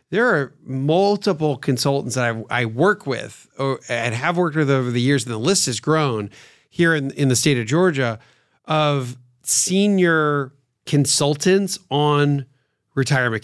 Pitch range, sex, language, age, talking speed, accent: 120-150 Hz, male, English, 40-59, 150 wpm, American